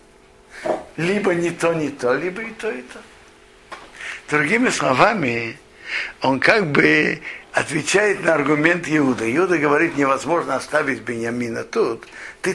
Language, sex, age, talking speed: Russian, male, 60-79, 125 wpm